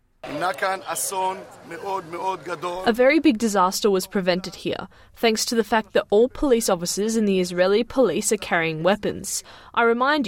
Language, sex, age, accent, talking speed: Indonesian, female, 10-29, Australian, 140 wpm